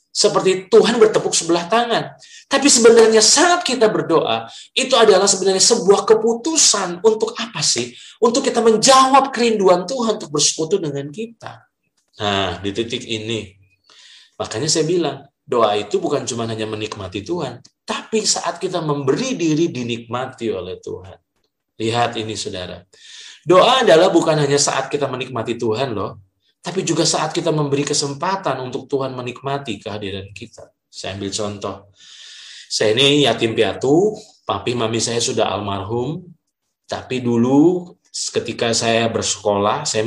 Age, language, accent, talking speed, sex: 20-39, Indonesian, native, 135 wpm, male